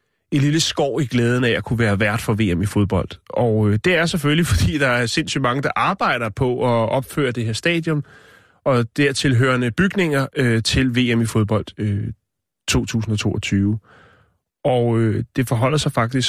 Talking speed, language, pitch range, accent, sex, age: 175 wpm, Danish, 110-140 Hz, native, male, 30-49